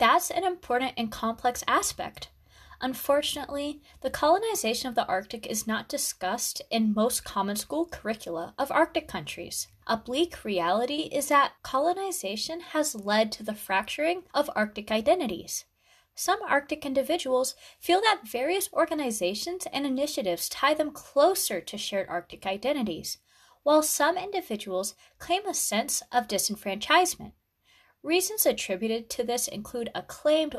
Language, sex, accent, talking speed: English, female, American, 135 wpm